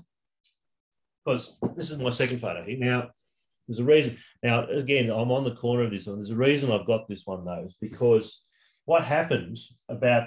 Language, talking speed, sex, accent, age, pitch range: English, 185 wpm, male, Australian, 30-49, 110-130 Hz